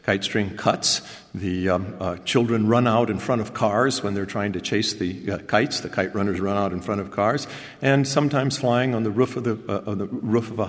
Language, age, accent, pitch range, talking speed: English, 50-69, American, 100-115 Hz, 245 wpm